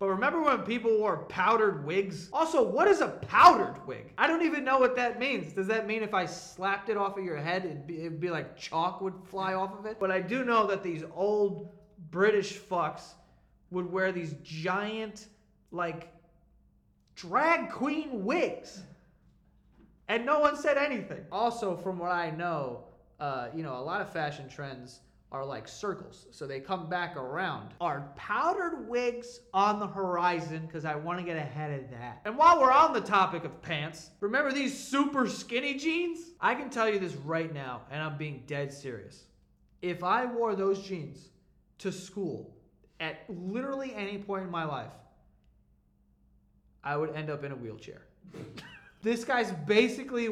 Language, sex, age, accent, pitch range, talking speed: English, male, 20-39, American, 160-225 Hz, 175 wpm